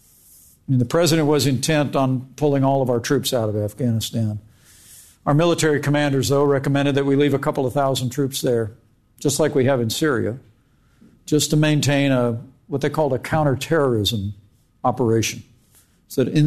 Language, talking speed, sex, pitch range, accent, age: English, 170 wpm, male, 115-140 Hz, American, 60-79